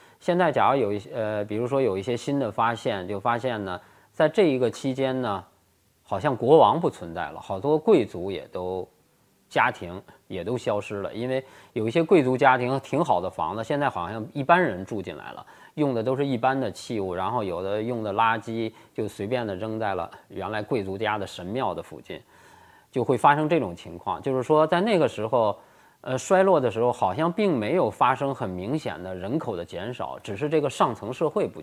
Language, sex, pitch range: Chinese, male, 105-155 Hz